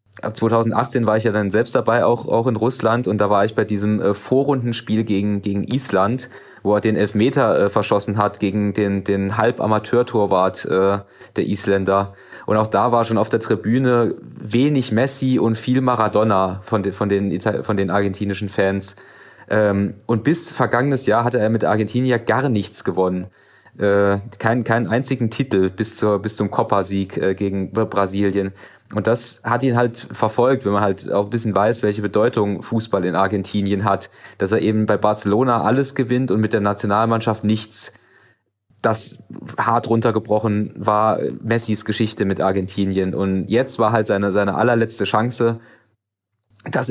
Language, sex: German, male